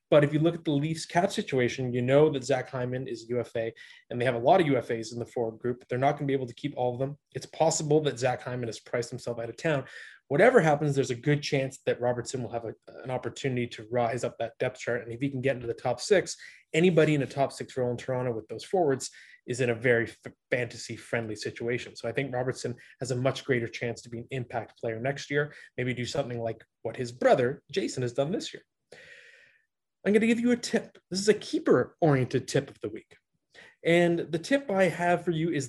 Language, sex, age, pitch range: English, male, 20-39, 120-155 Hz